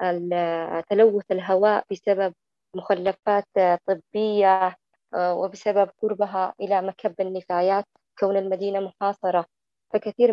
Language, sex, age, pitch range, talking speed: Arabic, female, 20-39, 190-210 Hz, 80 wpm